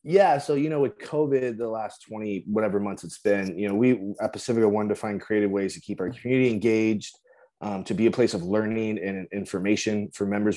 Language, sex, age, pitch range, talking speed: English, male, 20-39, 100-125 Hz, 220 wpm